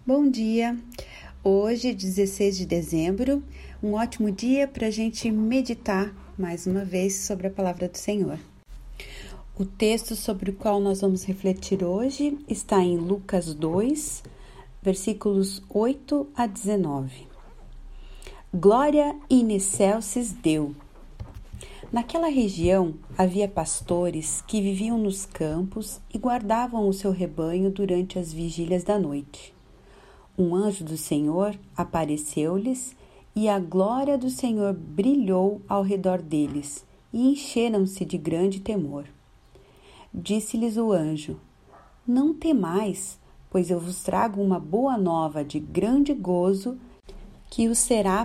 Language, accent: Portuguese, Brazilian